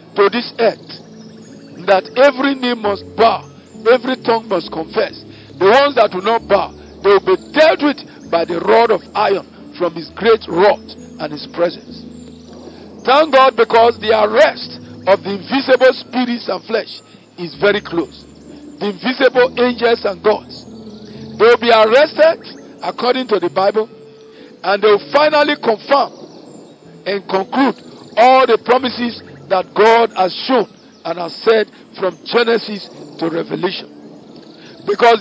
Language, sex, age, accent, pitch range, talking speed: English, male, 50-69, Nigerian, 190-250 Hz, 145 wpm